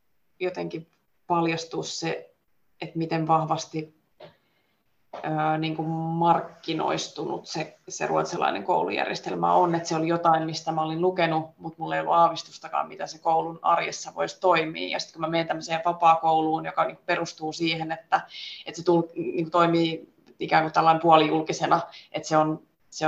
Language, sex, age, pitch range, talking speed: Finnish, female, 20-39, 160-175 Hz, 150 wpm